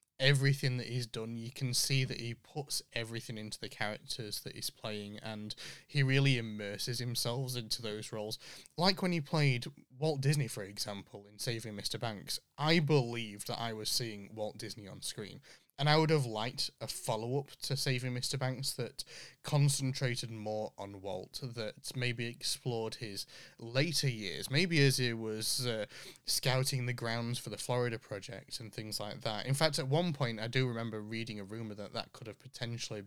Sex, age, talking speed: male, 20-39, 185 wpm